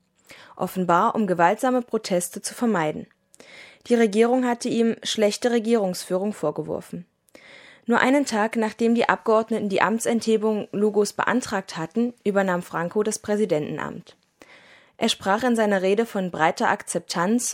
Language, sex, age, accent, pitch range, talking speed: German, female, 20-39, German, 185-230 Hz, 125 wpm